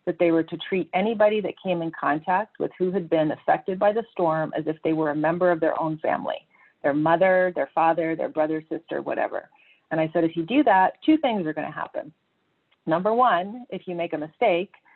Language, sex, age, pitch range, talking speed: English, female, 40-59, 160-185 Hz, 225 wpm